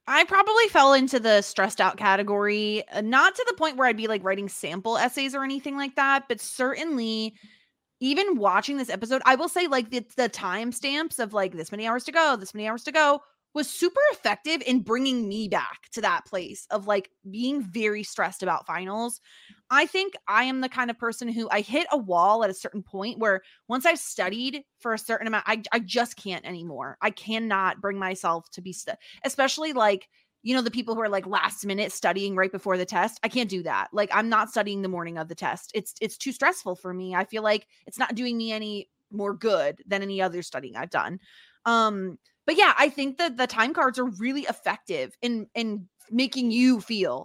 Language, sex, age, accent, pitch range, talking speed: English, female, 20-39, American, 195-260 Hz, 215 wpm